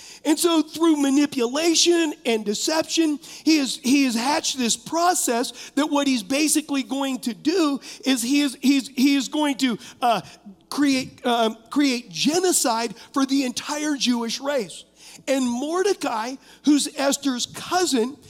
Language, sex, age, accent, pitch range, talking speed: English, male, 40-59, American, 240-295 Hz, 140 wpm